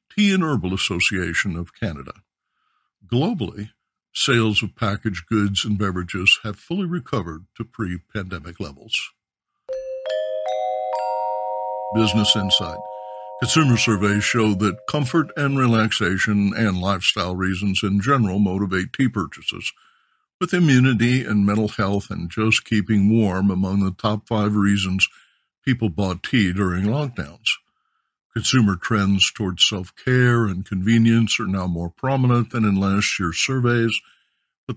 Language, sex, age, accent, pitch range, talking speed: English, male, 60-79, American, 95-115 Hz, 125 wpm